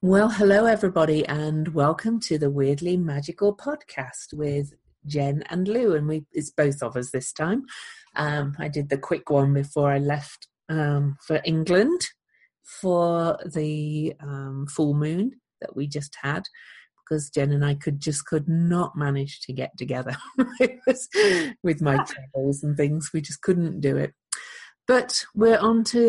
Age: 40-59